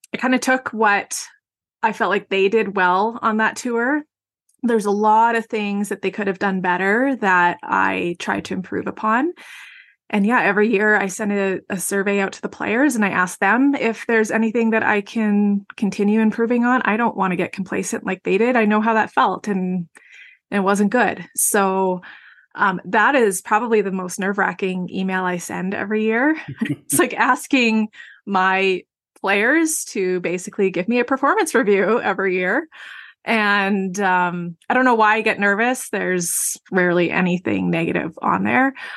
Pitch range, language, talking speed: 190-230 Hz, English, 185 wpm